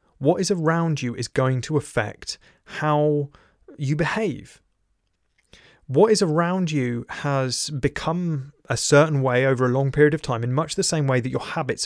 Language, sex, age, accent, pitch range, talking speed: English, male, 30-49, British, 130-160 Hz, 170 wpm